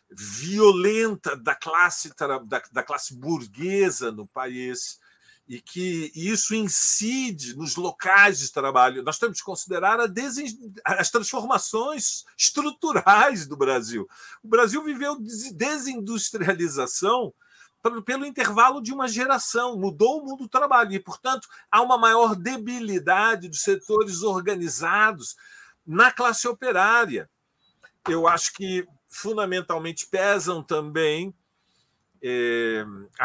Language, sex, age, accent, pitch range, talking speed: Portuguese, male, 50-69, Brazilian, 165-235 Hz, 105 wpm